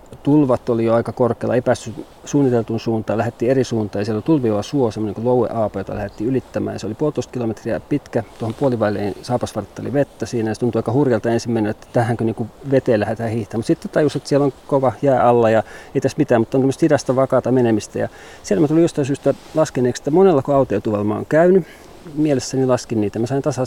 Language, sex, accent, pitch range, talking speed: Finnish, male, native, 110-135 Hz, 195 wpm